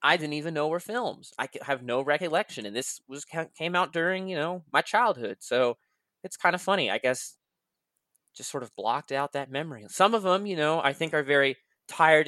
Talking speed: 215 wpm